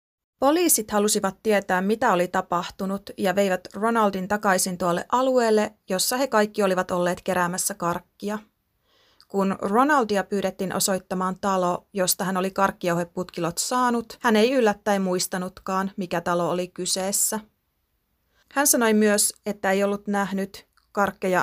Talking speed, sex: 125 wpm, female